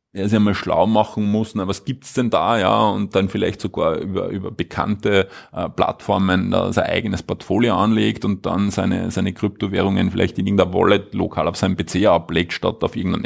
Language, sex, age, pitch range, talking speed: German, male, 30-49, 95-115 Hz, 190 wpm